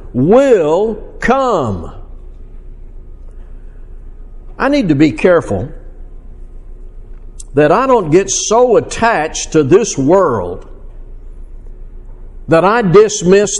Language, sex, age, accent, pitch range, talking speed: English, male, 60-79, American, 150-220 Hz, 85 wpm